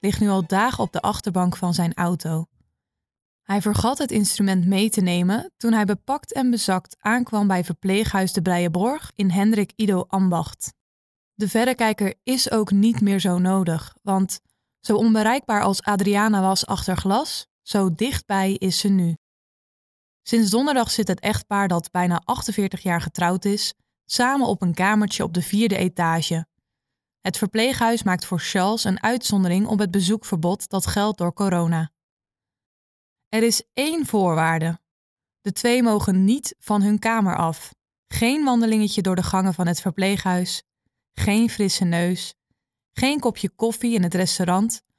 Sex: female